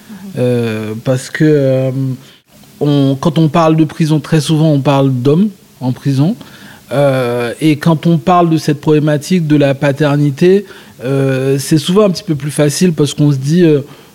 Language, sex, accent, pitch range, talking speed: French, male, French, 130-155 Hz, 175 wpm